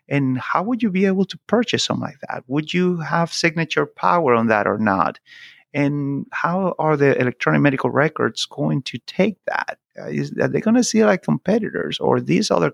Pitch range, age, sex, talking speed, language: 120-155 Hz, 30-49, male, 200 wpm, English